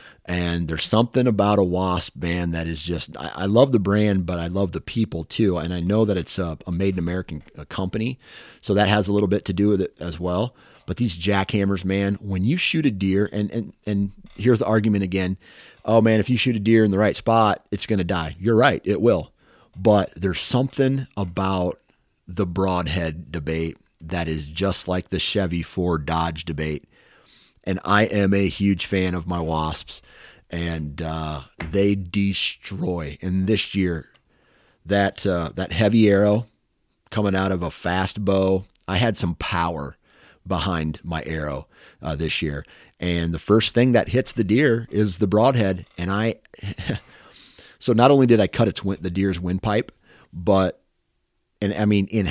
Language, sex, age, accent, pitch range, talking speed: English, male, 30-49, American, 85-105 Hz, 185 wpm